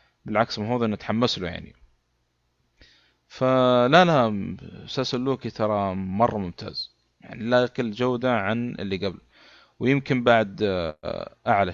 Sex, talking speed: male, 110 wpm